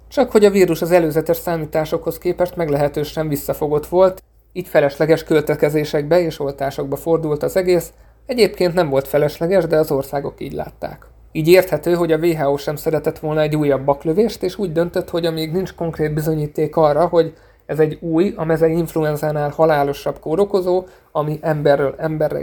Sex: male